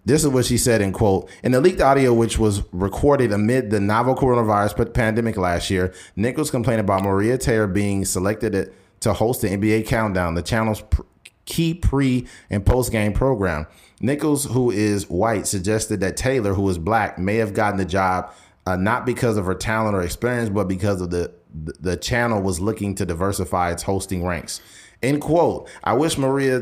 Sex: male